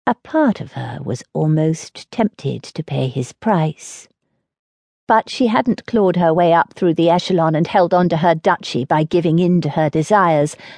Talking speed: 185 wpm